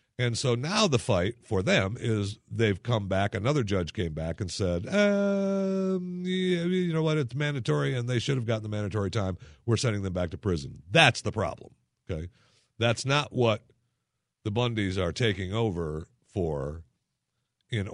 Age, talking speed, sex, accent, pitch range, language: 50-69, 175 wpm, male, American, 90-125 Hz, English